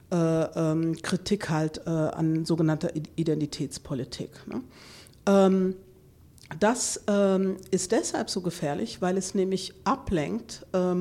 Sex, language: female, German